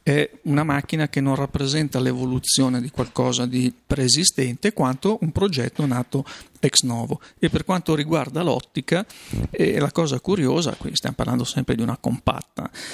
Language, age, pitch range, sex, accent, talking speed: Italian, 40-59, 125-145 Hz, male, native, 155 wpm